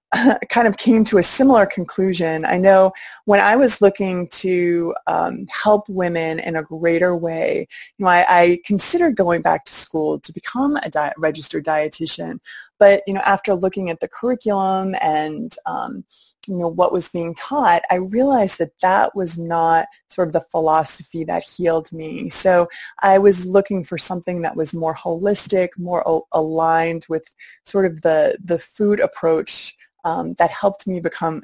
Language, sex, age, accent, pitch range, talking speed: English, female, 20-39, American, 165-195 Hz, 170 wpm